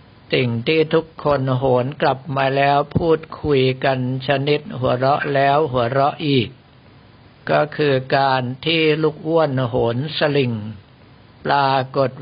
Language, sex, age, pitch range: Thai, male, 60-79, 130-150 Hz